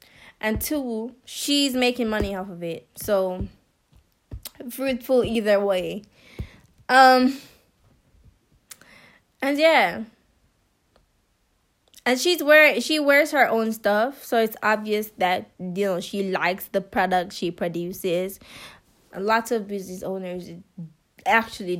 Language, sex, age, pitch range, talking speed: English, female, 10-29, 205-265 Hz, 115 wpm